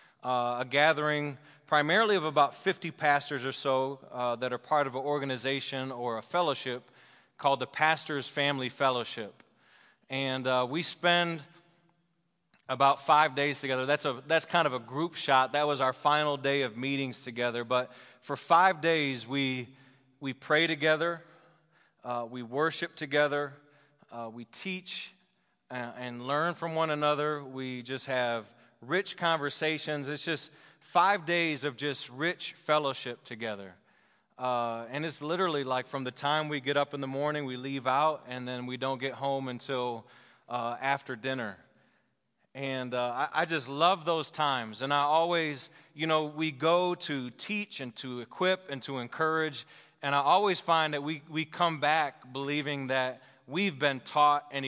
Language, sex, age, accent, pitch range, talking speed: English, male, 20-39, American, 130-160 Hz, 165 wpm